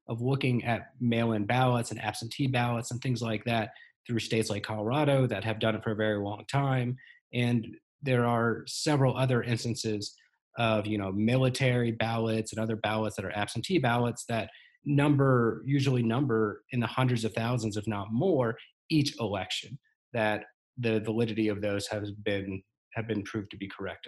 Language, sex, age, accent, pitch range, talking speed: English, male, 30-49, American, 110-130 Hz, 175 wpm